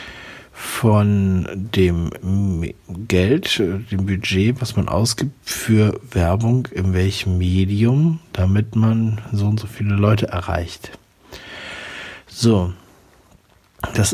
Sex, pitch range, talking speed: male, 100-125 Hz, 100 wpm